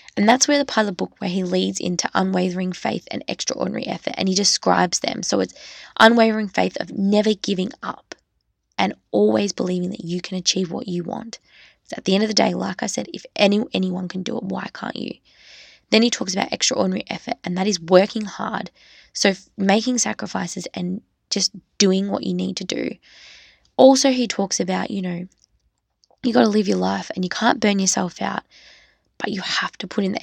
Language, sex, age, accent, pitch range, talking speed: English, female, 20-39, Australian, 185-225 Hz, 205 wpm